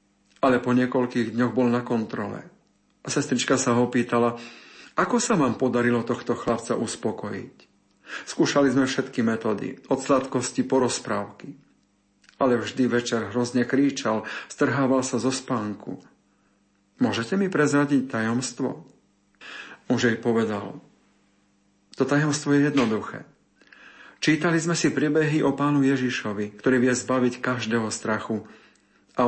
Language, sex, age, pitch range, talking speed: Slovak, male, 50-69, 115-135 Hz, 120 wpm